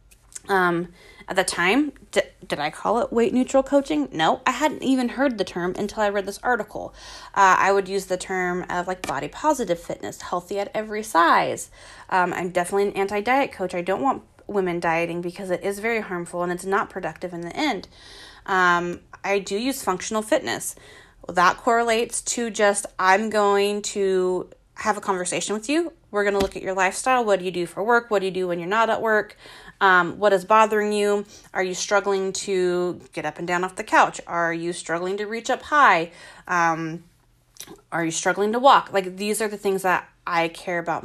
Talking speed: 205 wpm